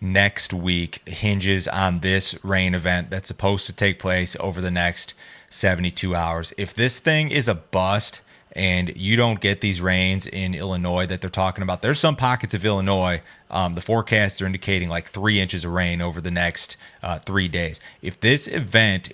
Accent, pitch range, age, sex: American, 90-100 Hz, 30-49, male